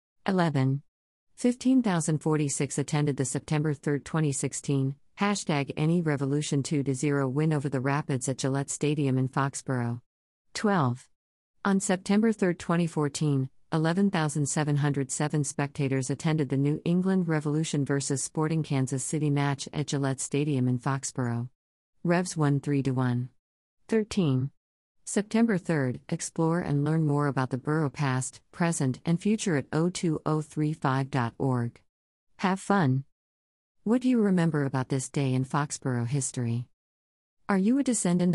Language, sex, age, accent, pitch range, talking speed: English, female, 50-69, American, 135-160 Hz, 120 wpm